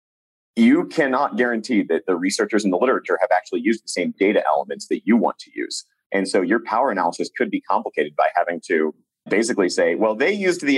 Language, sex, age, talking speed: English, male, 30-49, 210 wpm